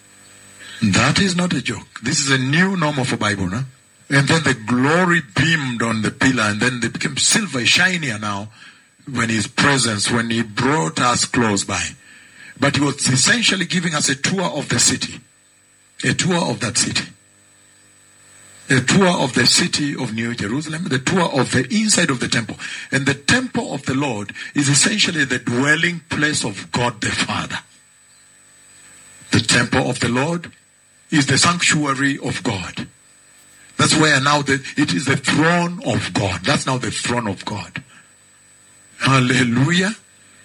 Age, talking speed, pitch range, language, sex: 50-69, 165 wpm, 105-150 Hz, English, male